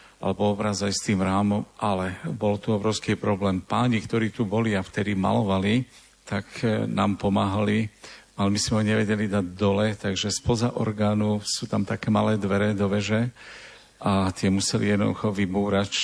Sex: male